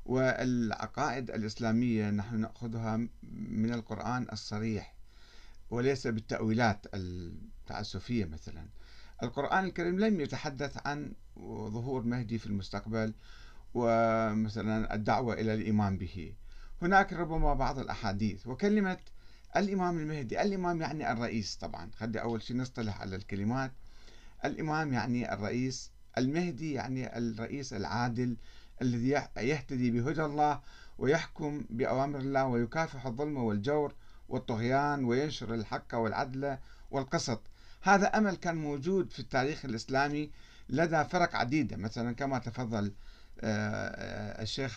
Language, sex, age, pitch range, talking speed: Arabic, male, 50-69, 110-140 Hz, 105 wpm